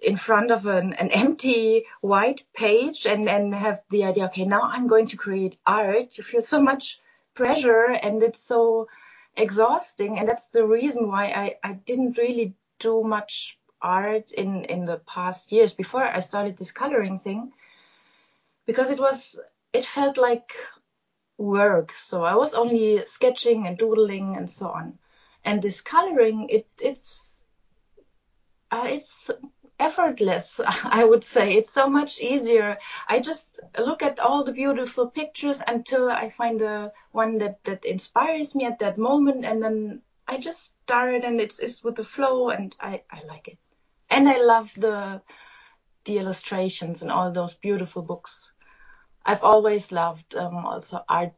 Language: English